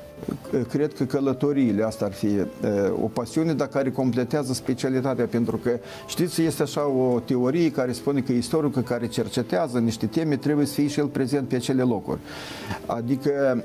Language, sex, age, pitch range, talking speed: Romanian, male, 50-69, 115-145 Hz, 165 wpm